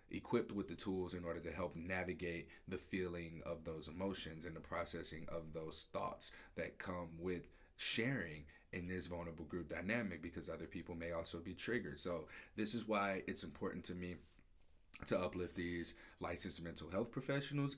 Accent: American